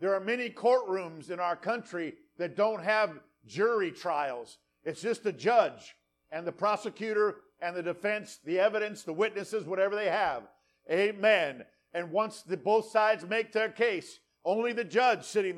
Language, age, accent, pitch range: English, 50-69, American, 200-240 Hz